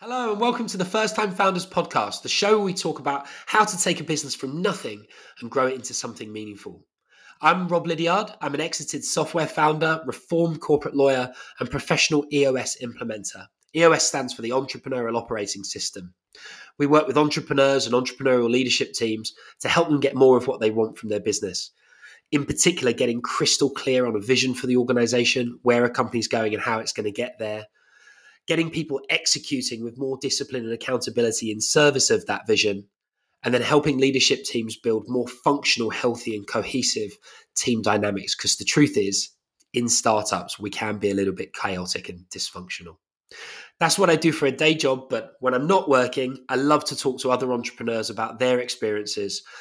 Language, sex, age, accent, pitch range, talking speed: English, male, 20-39, British, 120-160 Hz, 190 wpm